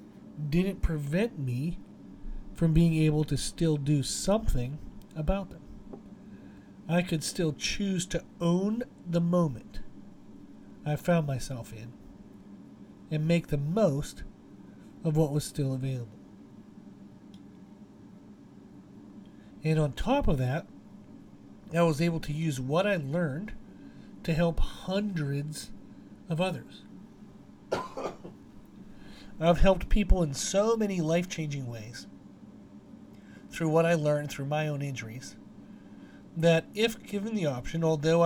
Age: 40-59